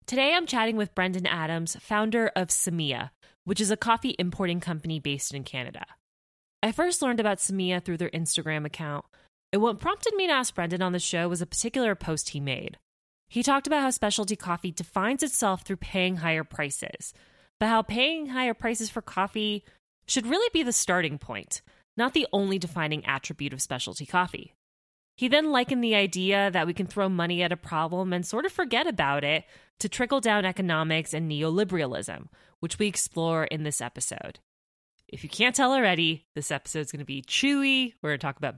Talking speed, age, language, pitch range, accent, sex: 195 wpm, 20-39, English, 160-225 Hz, American, female